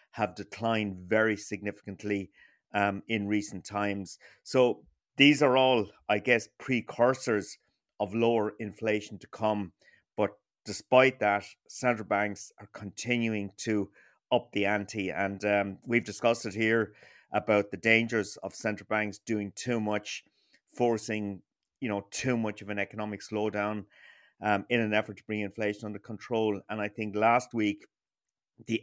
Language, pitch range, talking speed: English, 100-110 Hz, 145 wpm